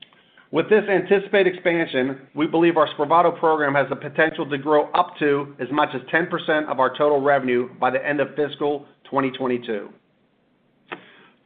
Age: 40-59